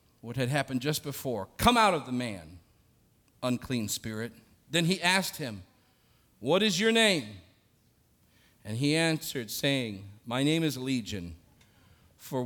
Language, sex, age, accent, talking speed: English, male, 50-69, American, 140 wpm